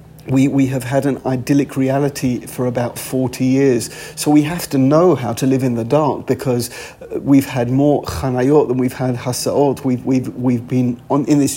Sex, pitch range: male, 120-135 Hz